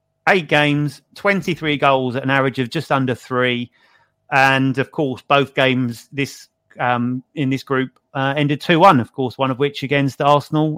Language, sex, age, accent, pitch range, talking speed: English, male, 30-49, British, 130-155 Hz, 175 wpm